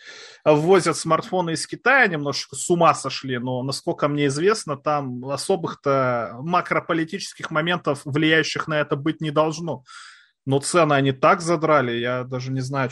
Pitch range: 130-160 Hz